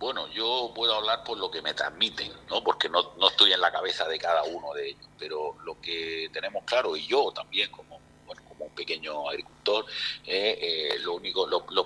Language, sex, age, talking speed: Spanish, male, 50-69, 205 wpm